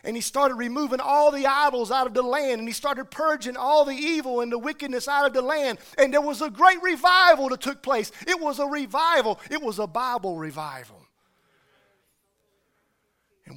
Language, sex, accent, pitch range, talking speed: English, male, American, 195-255 Hz, 195 wpm